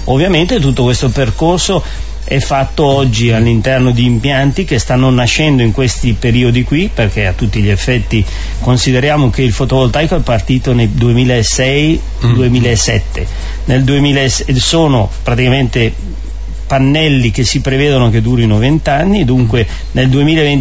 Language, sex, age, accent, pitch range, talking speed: Italian, male, 40-59, native, 110-140 Hz, 120 wpm